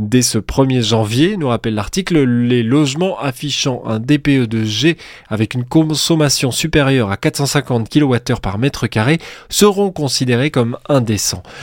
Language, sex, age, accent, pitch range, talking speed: French, male, 20-39, French, 120-160 Hz, 145 wpm